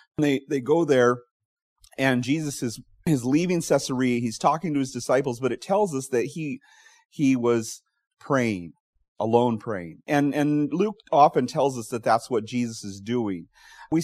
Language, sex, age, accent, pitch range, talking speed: English, male, 30-49, American, 120-160 Hz, 165 wpm